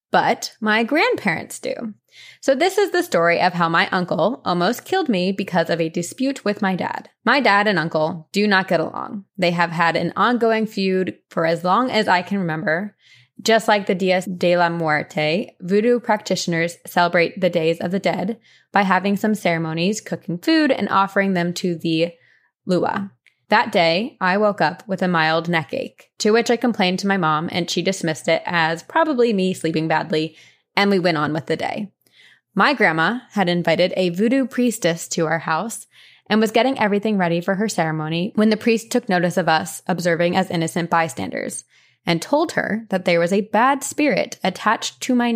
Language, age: English, 20-39